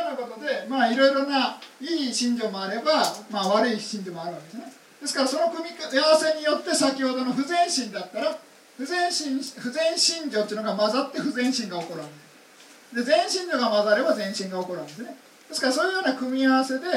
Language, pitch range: Japanese, 210-285 Hz